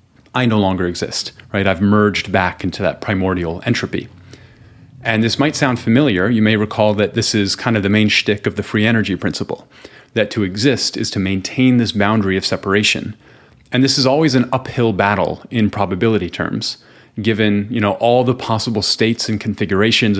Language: English